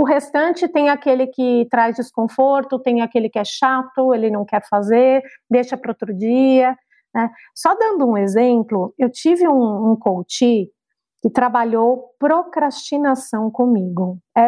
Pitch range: 240-315 Hz